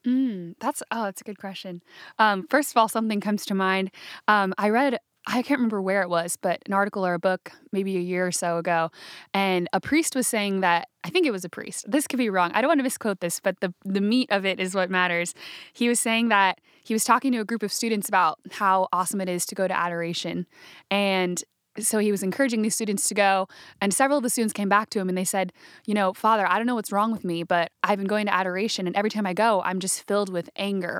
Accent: American